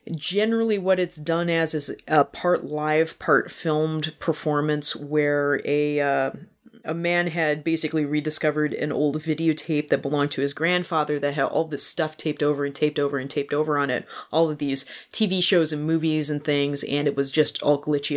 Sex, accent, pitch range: female, American, 145-170 Hz